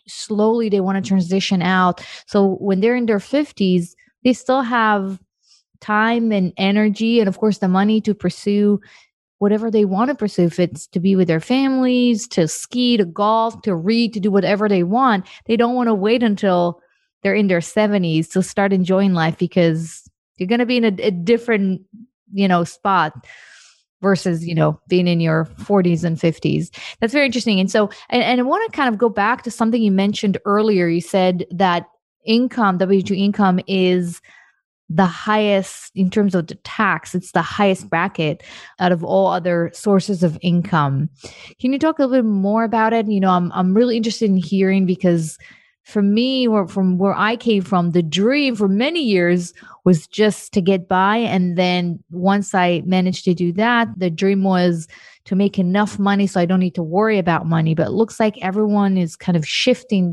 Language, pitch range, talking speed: English, 180-220 Hz, 195 wpm